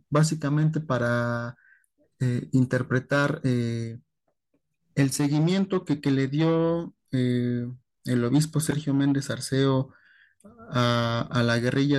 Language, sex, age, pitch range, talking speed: Spanish, male, 30-49, 120-150 Hz, 105 wpm